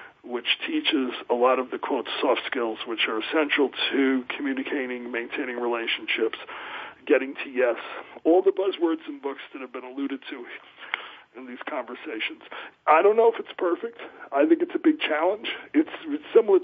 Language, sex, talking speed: English, male, 165 wpm